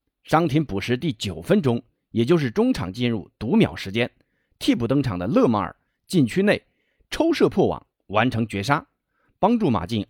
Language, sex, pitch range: Chinese, male, 105-155 Hz